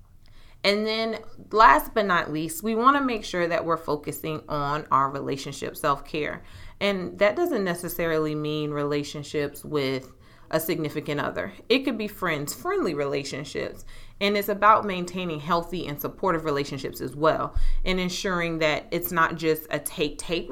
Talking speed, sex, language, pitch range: 150 wpm, female, English, 150-190 Hz